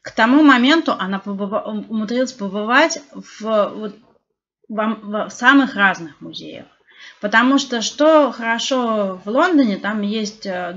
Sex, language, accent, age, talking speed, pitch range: female, Russian, native, 30-49, 125 wpm, 195-260 Hz